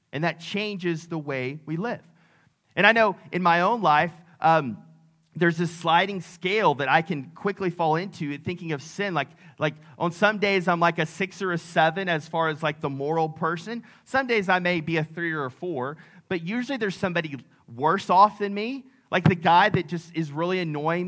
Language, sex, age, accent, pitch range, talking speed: English, male, 30-49, American, 155-190 Hz, 210 wpm